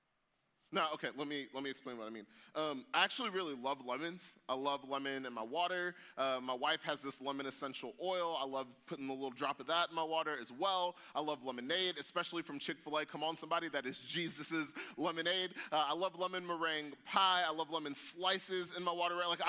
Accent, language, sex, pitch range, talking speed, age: American, English, male, 145-180 Hz, 215 wpm, 20-39